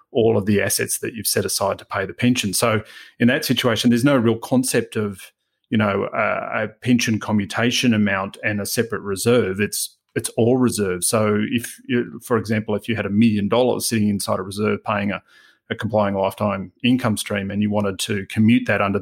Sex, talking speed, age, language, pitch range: male, 205 wpm, 30-49, English, 105-120 Hz